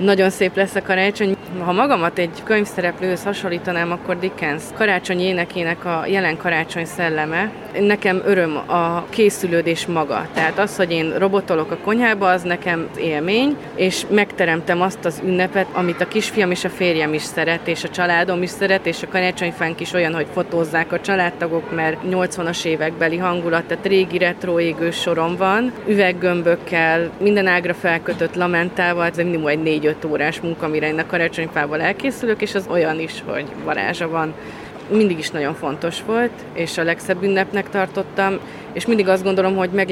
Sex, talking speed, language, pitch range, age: female, 165 wpm, Hungarian, 165-195 Hz, 30-49